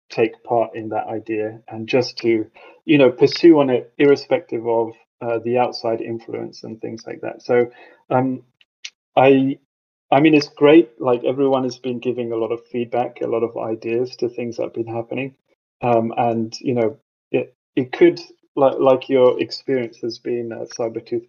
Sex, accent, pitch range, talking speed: male, British, 115-140 Hz, 180 wpm